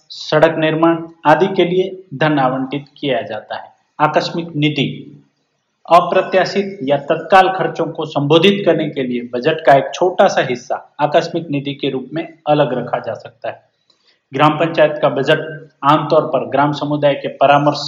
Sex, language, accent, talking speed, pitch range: male, Hindi, native, 160 wpm, 140-165 Hz